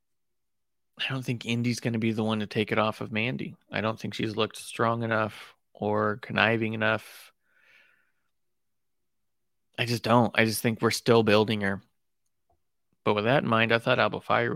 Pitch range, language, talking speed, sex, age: 110-125 Hz, English, 175 wpm, male, 30-49